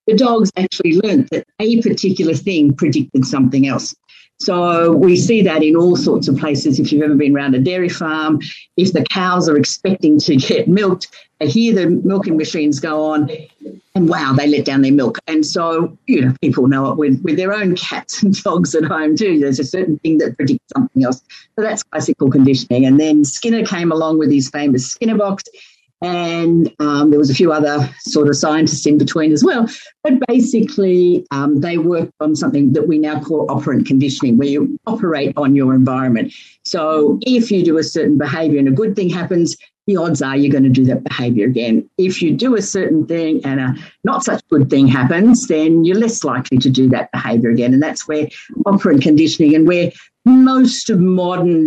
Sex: female